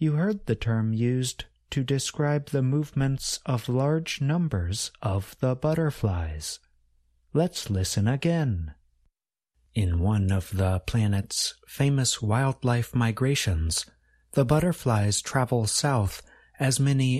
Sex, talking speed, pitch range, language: male, 110 wpm, 90-135 Hz, English